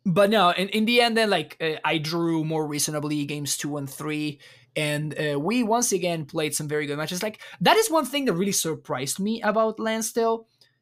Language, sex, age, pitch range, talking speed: English, male, 20-39, 135-185 Hz, 210 wpm